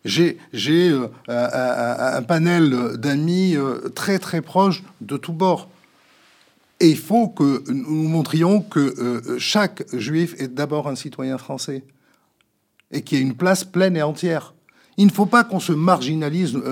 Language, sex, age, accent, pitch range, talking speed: French, male, 50-69, French, 135-185 Hz, 160 wpm